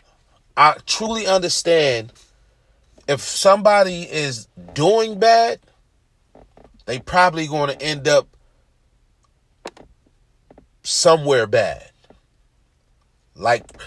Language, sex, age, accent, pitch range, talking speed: English, male, 40-59, American, 120-175 Hz, 75 wpm